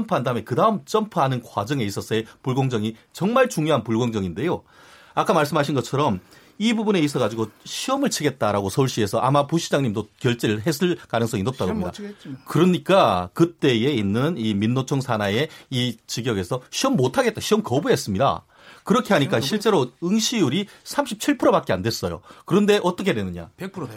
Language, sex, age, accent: Korean, male, 40-59, native